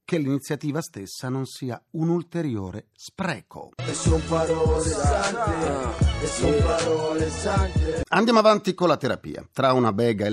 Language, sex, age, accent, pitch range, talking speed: Italian, male, 40-59, native, 100-155 Hz, 100 wpm